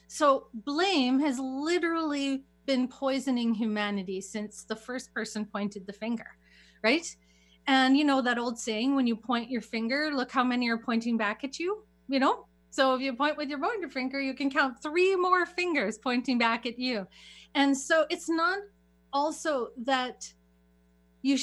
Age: 30-49